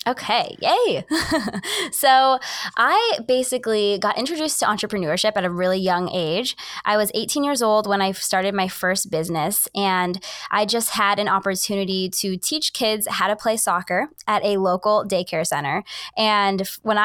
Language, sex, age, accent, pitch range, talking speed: English, female, 20-39, American, 185-220 Hz, 160 wpm